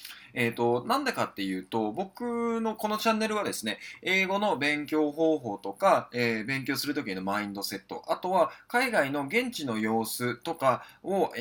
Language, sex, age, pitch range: Japanese, male, 20-39, 110-160 Hz